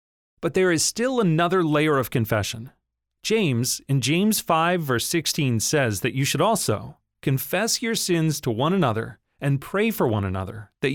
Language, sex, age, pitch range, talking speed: English, male, 30-49, 120-175 Hz, 170 wpm